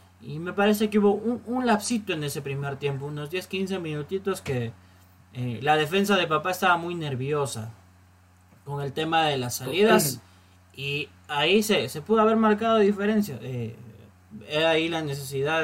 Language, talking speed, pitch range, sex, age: Spanish, 170 wpm, 130-175 Hz, male, 20-39